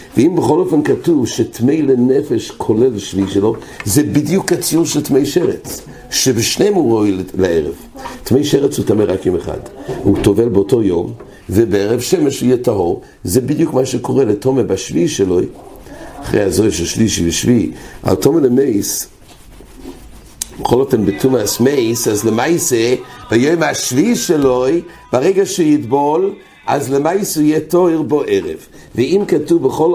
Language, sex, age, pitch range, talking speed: English, male, 60-79, 105-150 Hz, 135 wpm